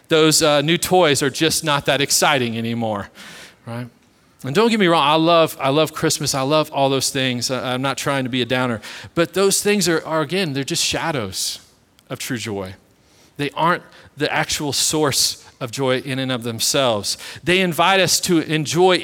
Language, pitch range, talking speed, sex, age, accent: English, 130-165 Hz, 195 wpm, male, 40-59, American